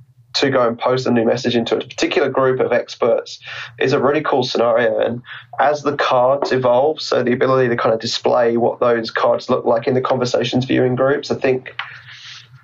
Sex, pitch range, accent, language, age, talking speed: male, 120-140 Hz, British, English, 20-39, 200 wpm